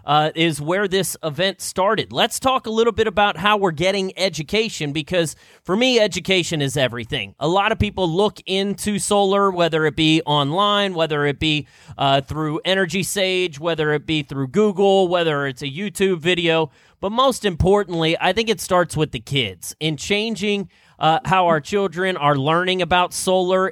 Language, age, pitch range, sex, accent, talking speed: English, 30-49, 145-195 Hz, male, American, 175 wpm